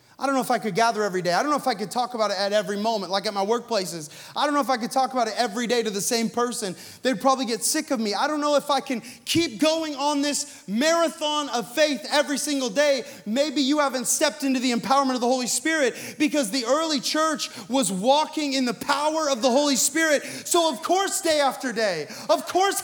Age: 30-49